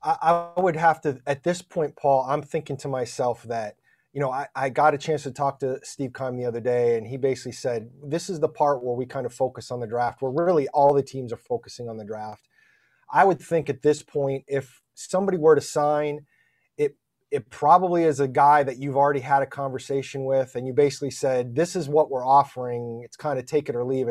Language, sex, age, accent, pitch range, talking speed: English, male, 30-49, American, 130-150 Hz, 235 wpm